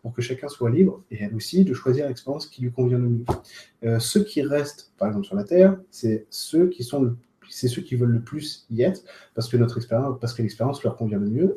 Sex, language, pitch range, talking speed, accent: male, French, 120-145 Hz, 255 wpm, French